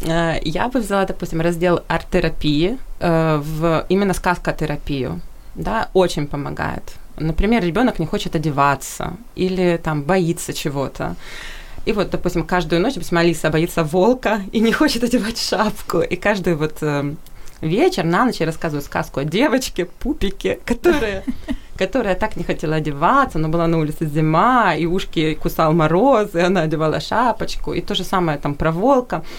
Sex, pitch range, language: female, 165-210 Hz, Ukrainian